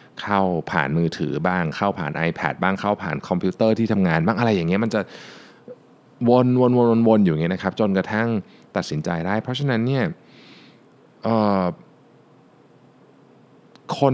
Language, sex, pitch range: Thai, male, 90-120 Hz